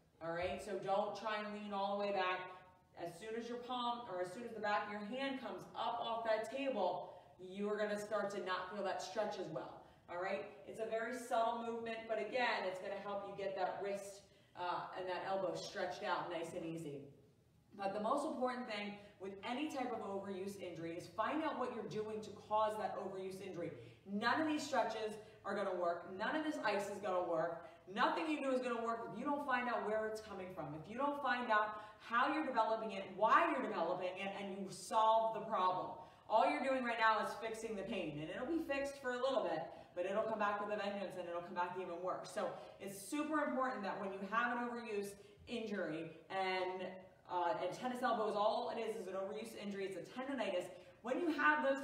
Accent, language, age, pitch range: American, English, 30-49, 185-230 Hz